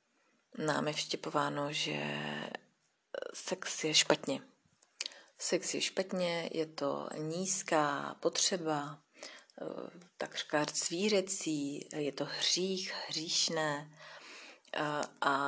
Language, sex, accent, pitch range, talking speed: Czech, female, native, 145-180 Hz, 80 wpm